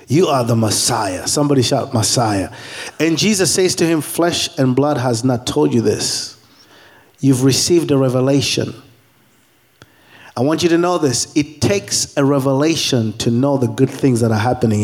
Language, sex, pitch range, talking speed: English, male, 125-180 Hz, 170 wpm